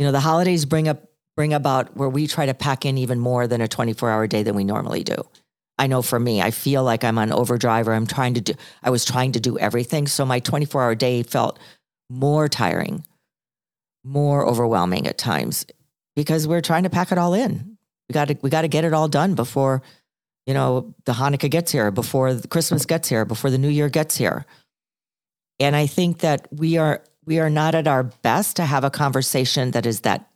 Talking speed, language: 215 wpm, English